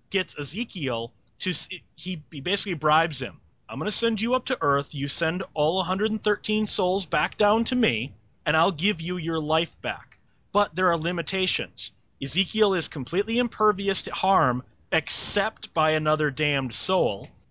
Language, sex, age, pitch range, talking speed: English, male, 30-49, 140-185 Hz, 160 wpm